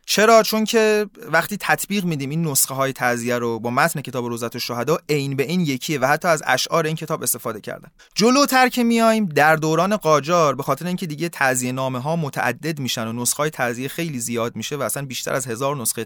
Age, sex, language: 30-49, male, Persian